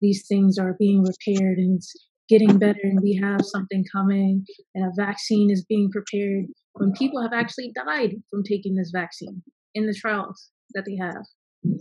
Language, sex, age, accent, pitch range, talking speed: English, female, 20-39, American, 190-210 Hz, 180 wpm